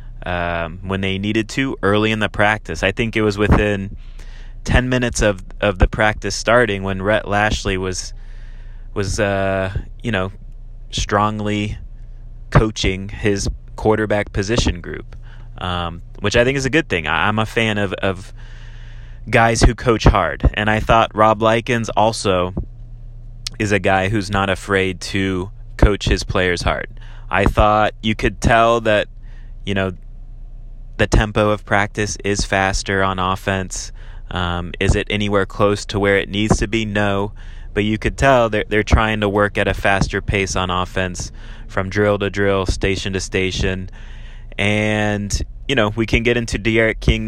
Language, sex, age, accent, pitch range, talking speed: English, male, 20-39, American, 100-115 Hz, 165 wpm